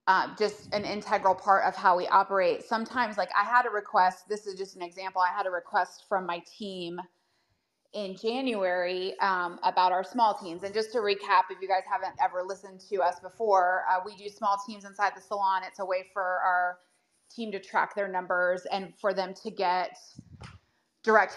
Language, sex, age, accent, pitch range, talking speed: English, female, 20-39, American, 185-210 Hz, 200 wpm